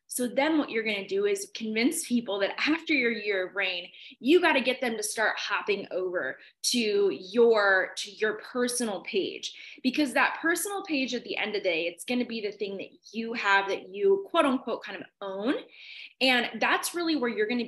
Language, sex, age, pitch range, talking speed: English, female, 20-39, 195-255 Hz, 215 wpm